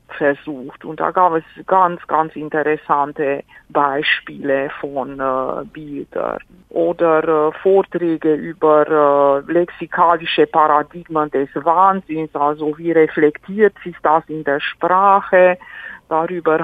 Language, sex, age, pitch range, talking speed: German, female, 50-69, 155-185 Hz, 110 wpm